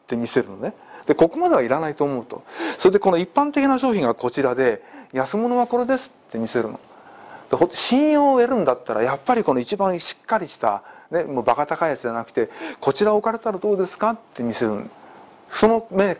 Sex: male